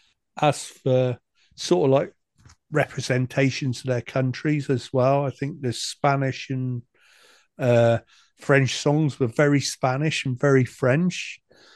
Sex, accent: male, British